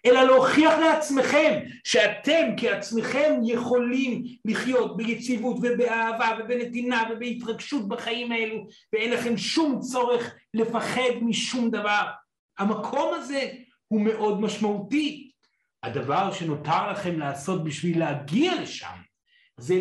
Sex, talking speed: male, 100 wpm